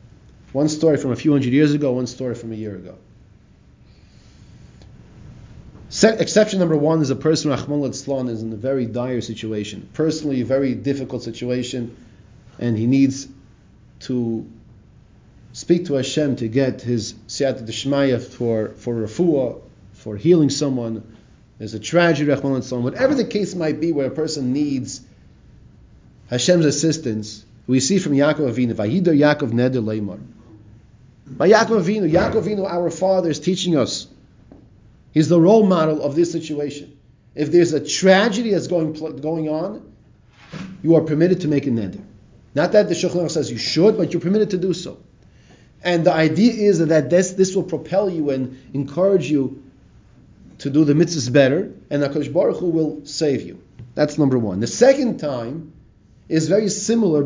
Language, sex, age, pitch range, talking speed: English, male, 30-49, 120-165 Hz, 160 wpm